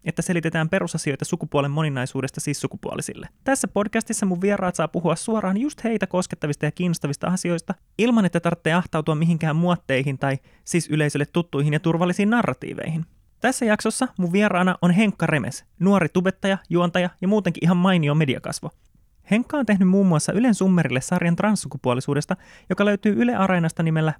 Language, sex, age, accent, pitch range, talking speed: Finnish, male, 20-39, native, 155-190 Hz, 155 wpm